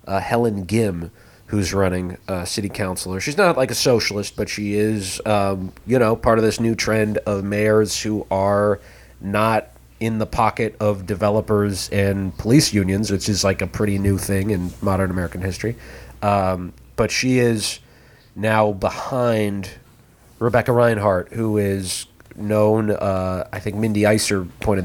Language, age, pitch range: English, 30-49, 95-110 Hz